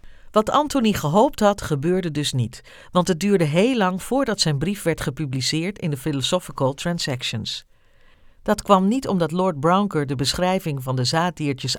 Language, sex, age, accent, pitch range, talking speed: Dutch, female, 50-69, Dutch, 145-210 Hz, 165 wpm